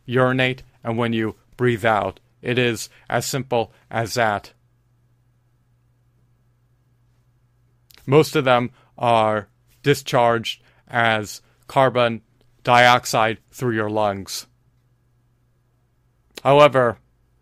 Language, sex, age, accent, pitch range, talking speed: English, male, 30-49, American, 110-125 Hz, 85 wpm